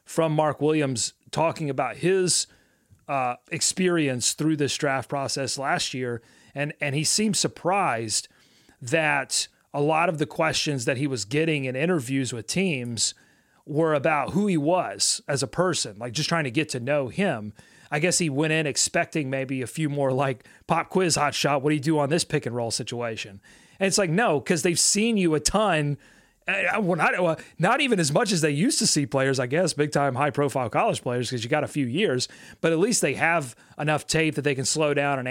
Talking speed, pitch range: 210 wpm, 135-165 Hz